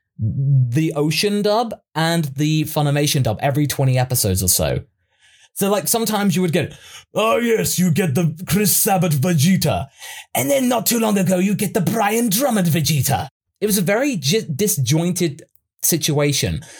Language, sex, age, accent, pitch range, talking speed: English, male, 20-39, British, 145-205 Hz, 160 wpm